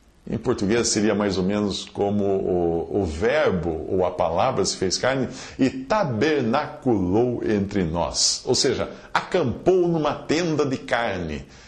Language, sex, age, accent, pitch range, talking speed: English, male, 50-69, Brazilian, 90-130 Hz, 140 wpm